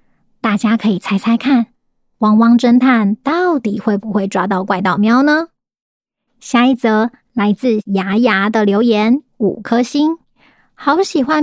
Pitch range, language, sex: 215-270 Hz, Chinese, male